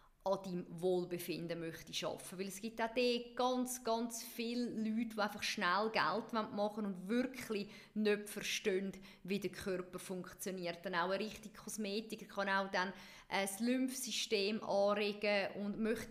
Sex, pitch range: female, 200-260 Hz